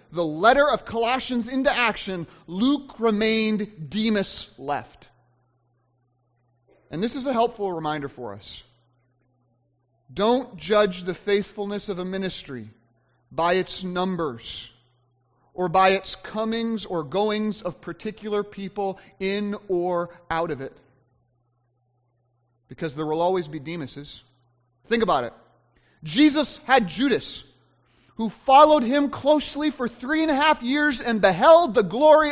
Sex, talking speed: male, 130 wpm